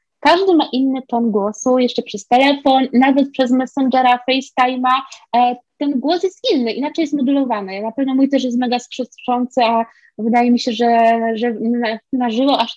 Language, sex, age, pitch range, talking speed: Polish, female, 20-39, 230-320 Hz, 180 wpm